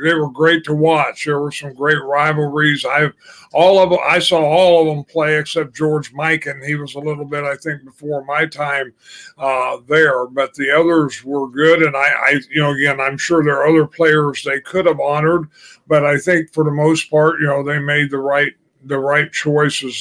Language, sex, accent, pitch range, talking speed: English, male, American, 140-160 Hz, 215 wpm